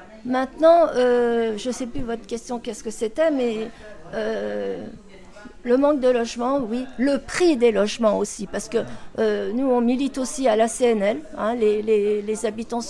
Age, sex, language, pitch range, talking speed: 50-69, female, French, 215-250 Hz, 175 wpm